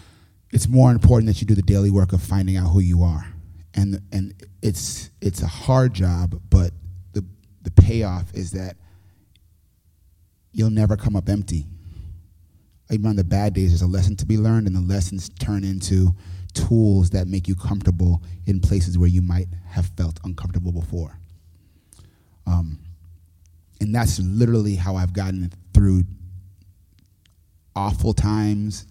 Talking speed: 150 wpm